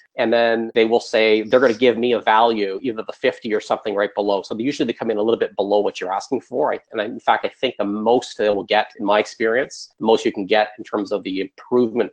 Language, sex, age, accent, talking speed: English, male, 40-59, American, 265 wpm